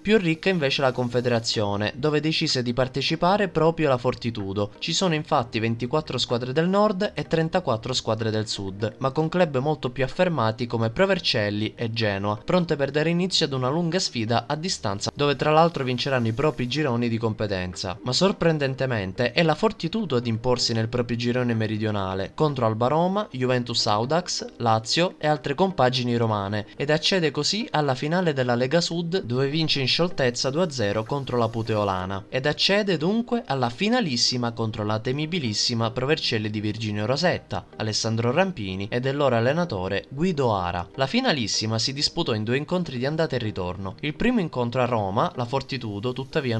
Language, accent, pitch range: Italian, native, 110-160 Hz